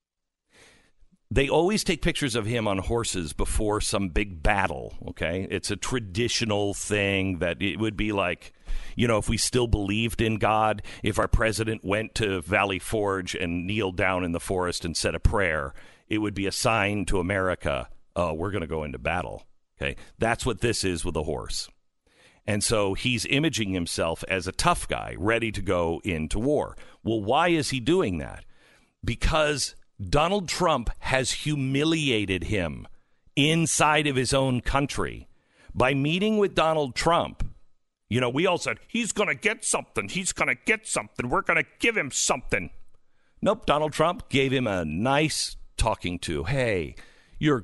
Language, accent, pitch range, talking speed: English, American, 95-150 Hz, 175 wpm